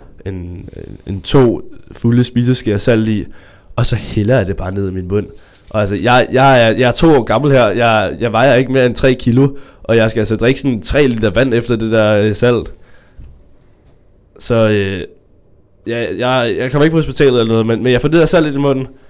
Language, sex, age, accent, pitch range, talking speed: Danish, male, 20-39, native, 105-135 Hz, 215 wpm